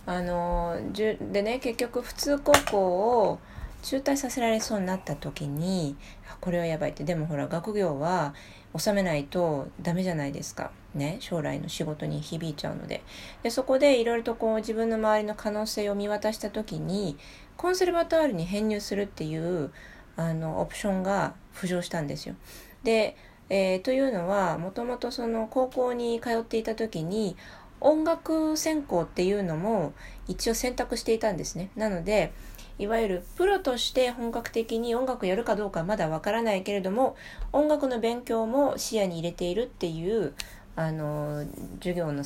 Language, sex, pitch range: Japanese, female, 170-235 Hz